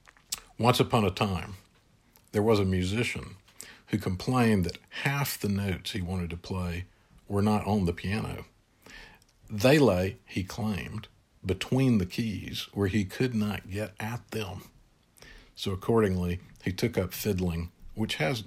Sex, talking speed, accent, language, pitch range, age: male, 145 wpm, American, English, 90-110 Hz, 50-69